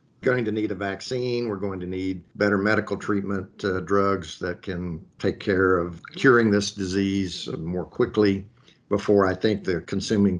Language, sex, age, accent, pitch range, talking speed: English, male, 50-69, American, 95-105 Hz, 165 wpm